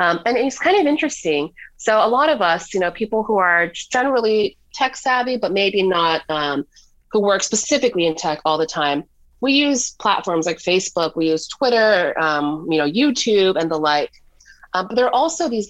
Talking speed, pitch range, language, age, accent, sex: 200 wpm, 160-220 Hz, English, 30-49, American, female